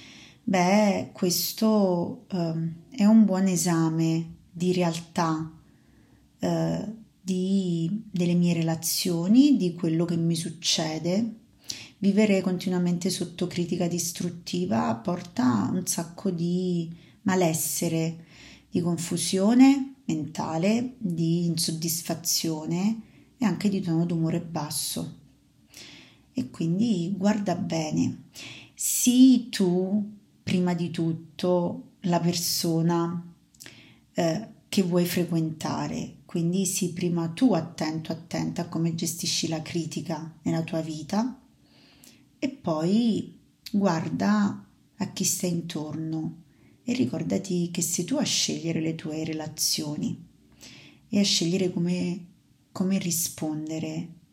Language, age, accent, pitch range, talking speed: Italian, 30-49, native, 165-190 Hz, 100 wpm